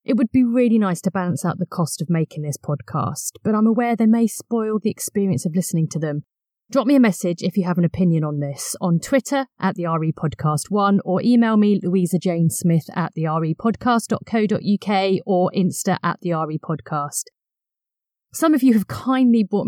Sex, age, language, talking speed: female, 30-49, English, 180 wpm